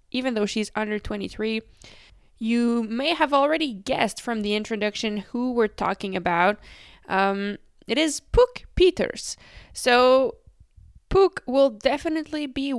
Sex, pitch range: female, 215-275 Hz